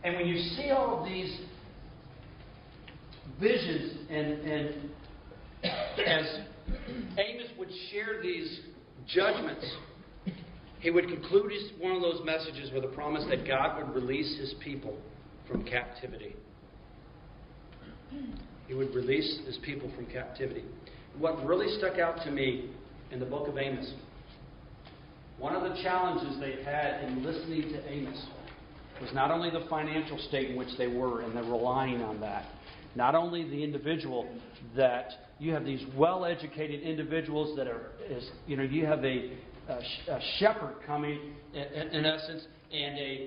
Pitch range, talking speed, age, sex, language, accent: 135-175 Hz, 145 wpm, 50-69, male, Italian, American